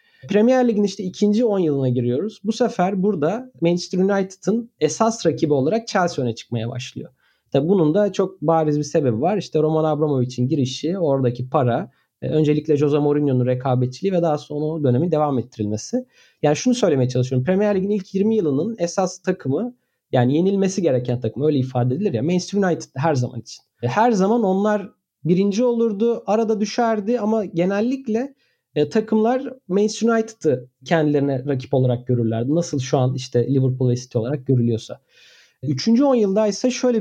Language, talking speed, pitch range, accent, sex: Turkish, 155 wpm, 135-205 Hz, native, male